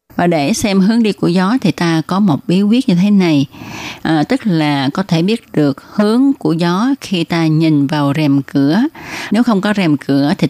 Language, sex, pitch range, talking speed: Vietnamese, female, 150-195 Hz, 210 wpm